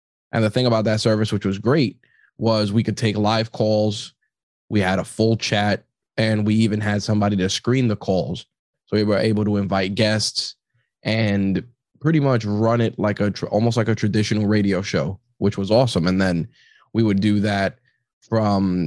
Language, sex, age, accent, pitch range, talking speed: English, male, 20-39, American, 100-115 Hz, 190 wpm